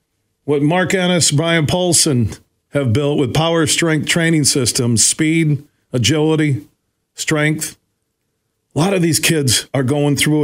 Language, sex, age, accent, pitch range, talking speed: English, male, 40-59, American, 125-165 Hz, 130 wpm